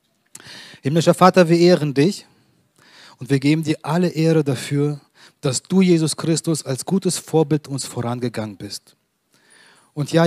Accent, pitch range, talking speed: German, 125-160 Hz, 140 wpm